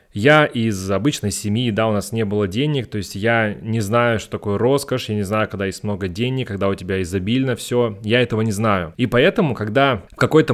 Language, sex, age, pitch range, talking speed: Russian, male, 20-39, 105-125 Hz, 220 wpm